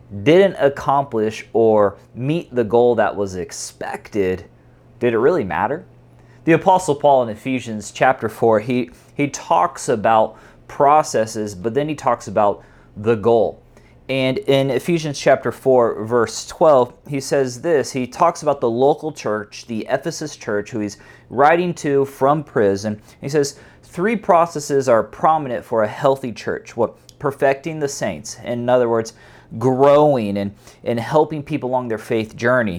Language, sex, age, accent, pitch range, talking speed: English, male, 30-49, American, 110-150 Hz, 150 wpm